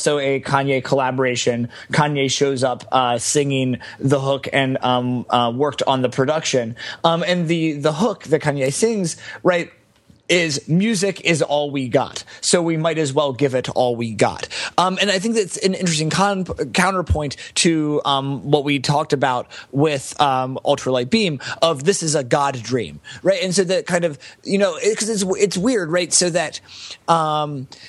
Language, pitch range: English, 135-170 Hz